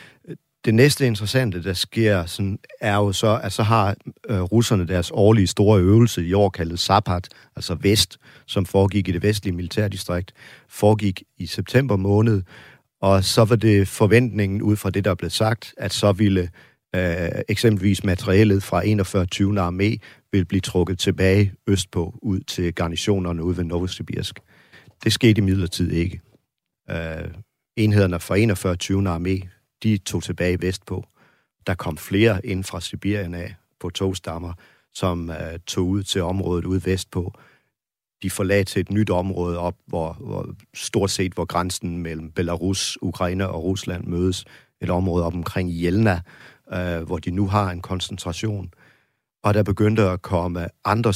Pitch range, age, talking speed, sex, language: 90-105 Hz, 40-59, 155 wpm, male, Danish